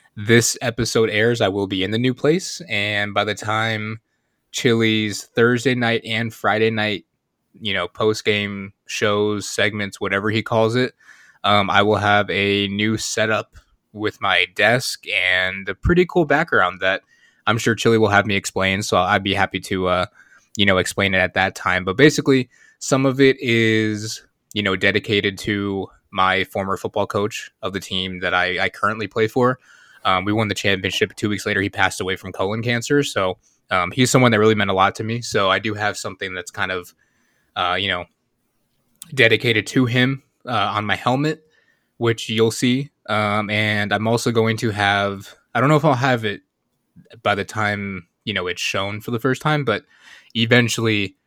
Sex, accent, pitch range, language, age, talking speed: male, American, 100-115 Hz, English, 20-39, 190 wpm